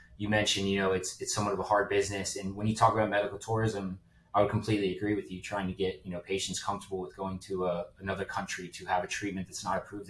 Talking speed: 260 wpm